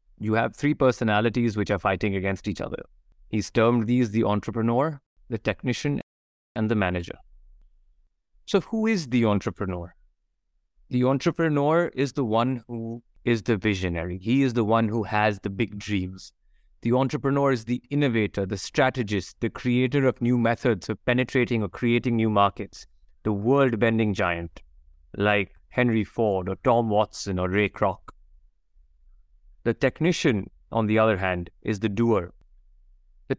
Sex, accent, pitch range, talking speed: male, Indian, 95-125 Hz, 150 wpm